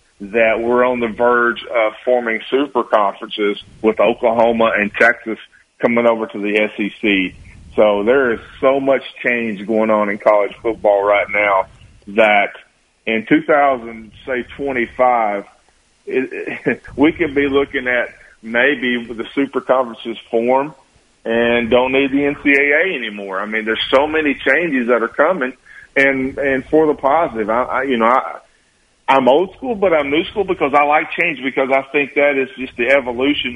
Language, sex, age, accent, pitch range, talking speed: English, male, 40-59, American, 115-140 Hz, 165 wpm